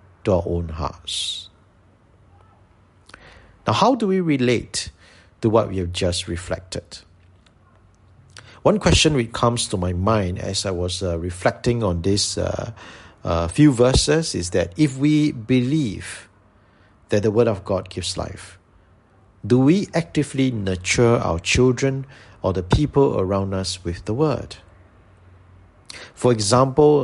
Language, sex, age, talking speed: English, male, 50-69, 130 wpm